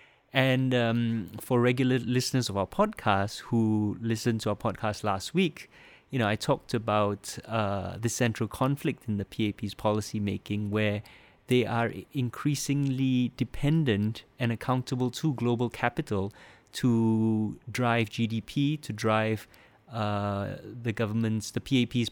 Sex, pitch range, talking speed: male, 110-130 Hz, 135 wpm